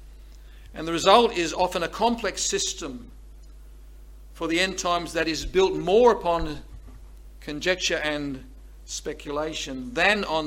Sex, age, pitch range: male, 50-69, 130-205 Hz